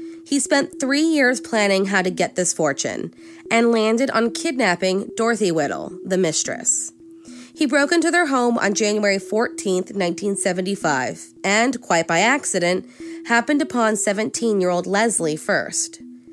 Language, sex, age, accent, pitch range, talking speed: English, female, 20-39, American, 185-255 Hz, 130 wpm